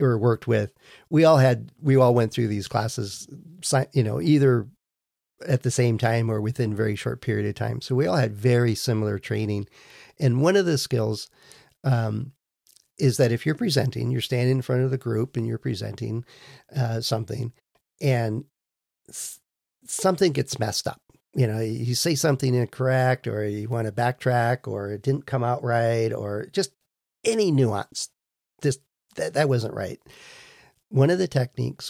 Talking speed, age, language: 170 wpm, 50-69, English